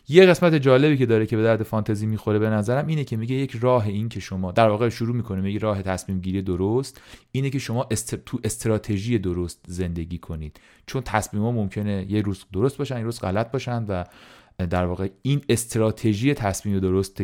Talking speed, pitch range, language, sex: 200 wpm, 95-125 Hz, Persian, male